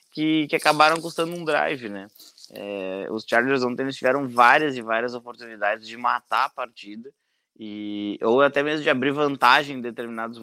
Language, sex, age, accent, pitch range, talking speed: English, male, 20-39, Brazilian, 115-135 Hz, 175 wpm